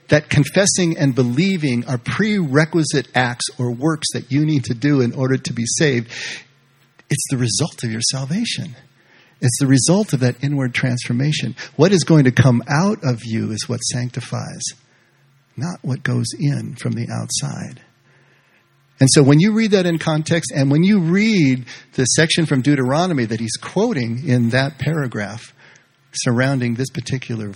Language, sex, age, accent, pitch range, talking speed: English, male, 50-69, American, 125-155 Hz, 165 wpm